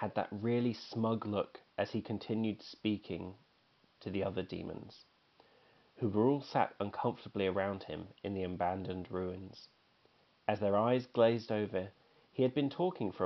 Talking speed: 155 wpm